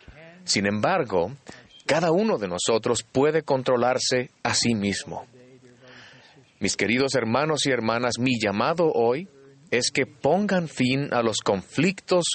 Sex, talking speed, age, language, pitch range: male, 125 wpm, 40-59, Spanish, 115-150 Hz